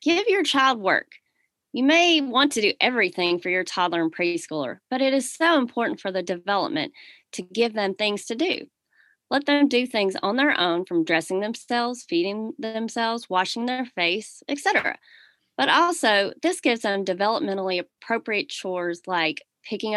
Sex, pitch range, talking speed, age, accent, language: female, 180-250 Hz, 165 wpm, 30-49, American, English